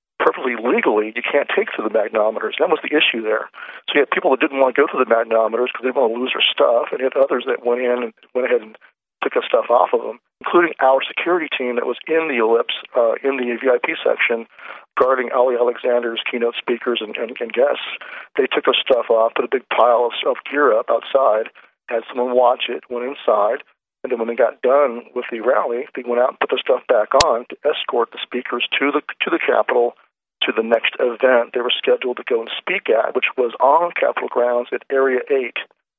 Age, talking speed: 40-59, 230 wpm